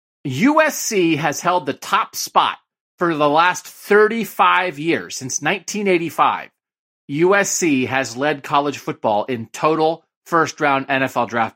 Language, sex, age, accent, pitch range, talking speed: English, male, 40-59, American, 135-180 Hz, 120 wpm